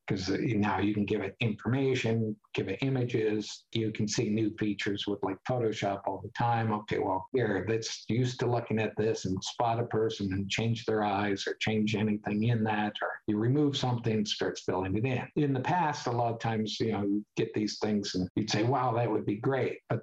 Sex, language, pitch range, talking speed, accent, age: male, English, 100-120 Hz, 220 wpm, American, 50-69